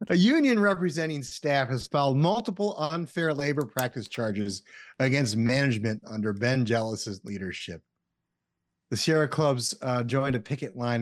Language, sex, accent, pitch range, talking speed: English, male, American, 110-155 Hz, 135 wpm